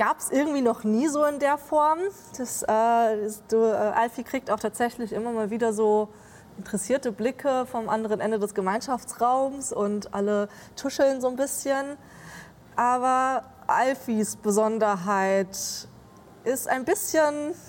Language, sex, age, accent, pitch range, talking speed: German, female, 20-39, German, 190-245 Hz, 140 wpm